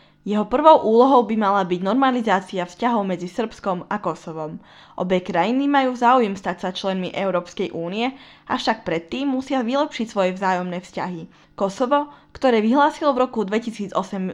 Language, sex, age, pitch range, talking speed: Slovak, female, 10-29, 185-245 Hz, 140 wpm